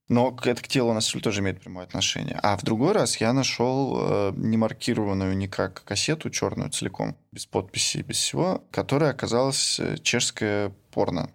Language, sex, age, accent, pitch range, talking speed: Russian, male, 20-39, native, 105-130 Hz, 165 wpm